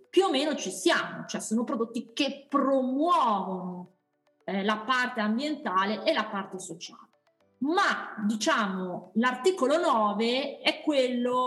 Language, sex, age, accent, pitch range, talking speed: Italian, female, 30-49, native, 210-275 Hz, 125 wpm